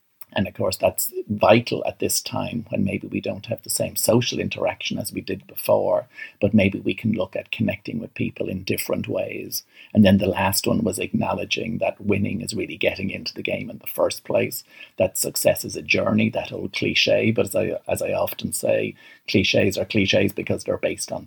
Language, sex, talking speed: English, male, 210 wpm